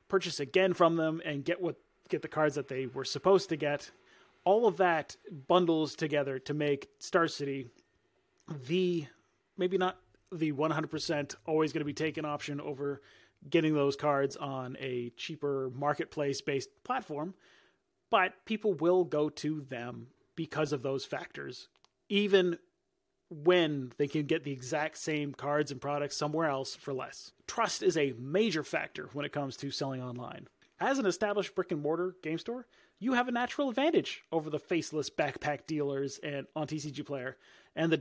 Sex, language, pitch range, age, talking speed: male, English, 145-180 Hz, 30-49, 165 wpm